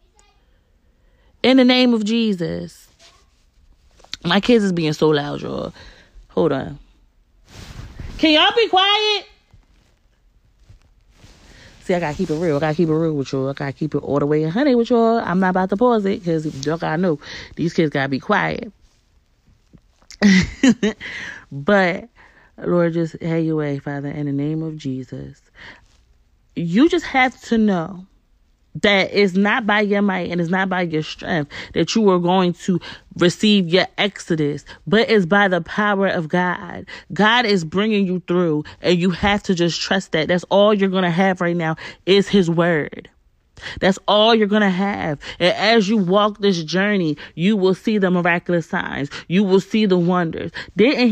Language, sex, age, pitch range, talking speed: English, female, 30-49, 155-205 Hz, 175 wpm